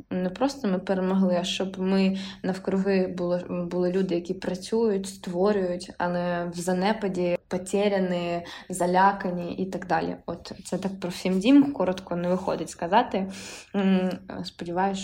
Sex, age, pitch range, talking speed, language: female, 20-39, 180-205 Hz, 130 wpm, Ukrainian